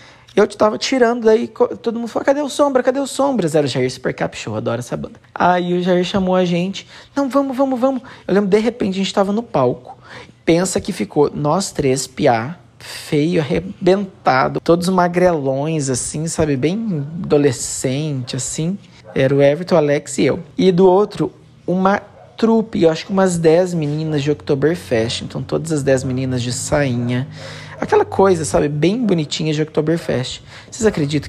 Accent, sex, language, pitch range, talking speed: Brazilian, male, Portuguese, 140-190 Hz, 175 wpm